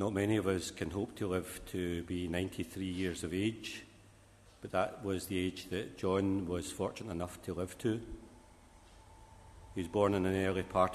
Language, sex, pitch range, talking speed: English, male, 90-100 Hz, 185 wpm